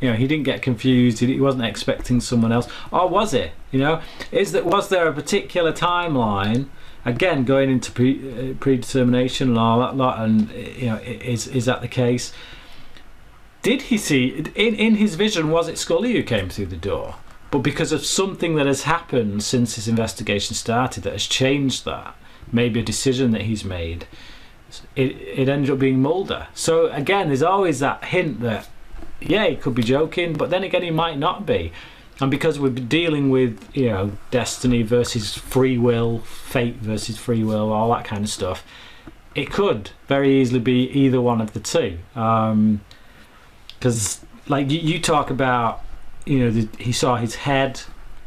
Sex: male